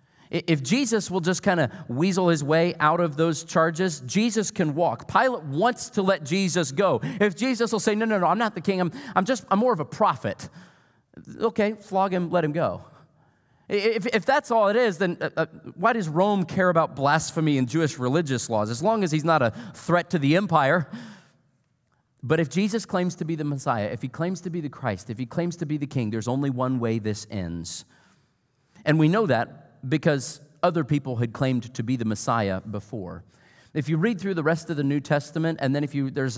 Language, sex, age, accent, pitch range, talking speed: English, male, 40-59, American, 130-180 Hz, 220 wpm